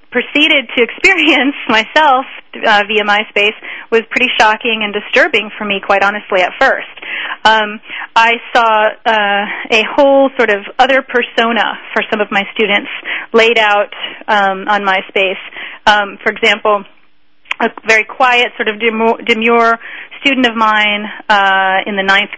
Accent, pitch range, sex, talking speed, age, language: American, 210-260 Hz, female, 145 wpm, 30-49, English